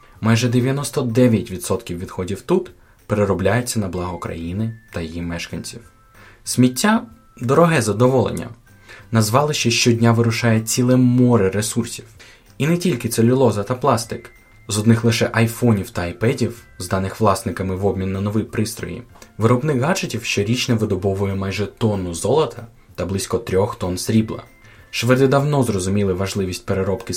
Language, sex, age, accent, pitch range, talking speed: Ukrainian, male, 20-39, native, 100-125 Hz, 130 wpm